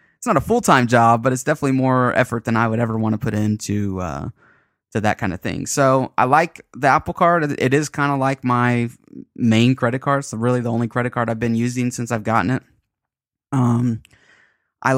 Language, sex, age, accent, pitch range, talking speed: English, male, 20-39, American, 110-135 Hz, 210 wpm